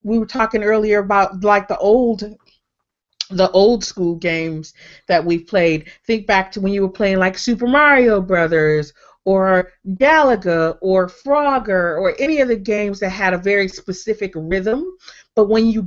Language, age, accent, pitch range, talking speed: English, 30-49, American, 185-235 Hz, 170 wpm